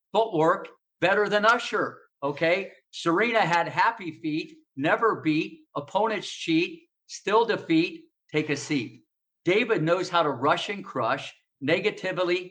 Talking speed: 125 wpm